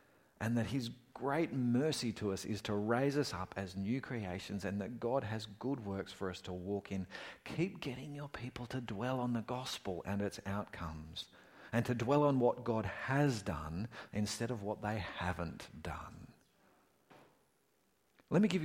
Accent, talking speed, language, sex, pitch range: Australian, 175 wpm, English, male, 105-160 Hz